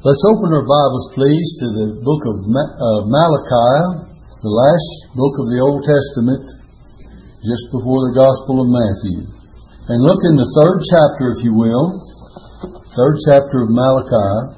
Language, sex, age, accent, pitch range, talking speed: English, male, 60-79, American, 115-150 Hz, 150 wpm